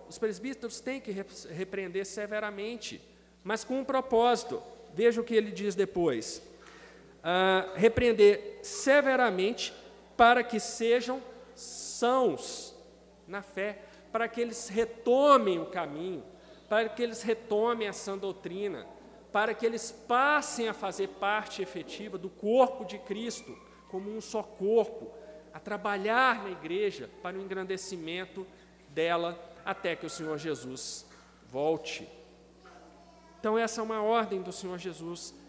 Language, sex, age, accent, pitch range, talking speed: Portuguese, male, 40-59, Brazilian, 180-230 Hz, 125 wpm